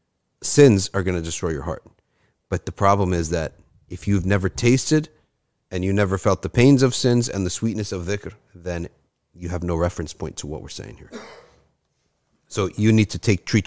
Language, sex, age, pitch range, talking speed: English, male, 40-59, 90-125 Hz, 200 wpm